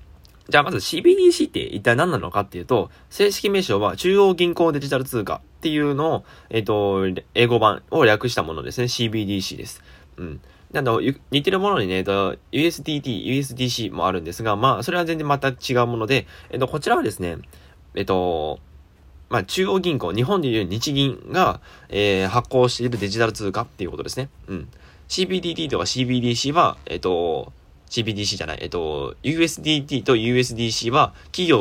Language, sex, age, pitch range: Japanese, male, 20-39, 90-145 Hz